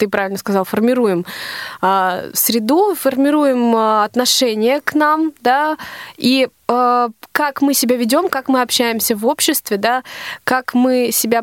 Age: 20-39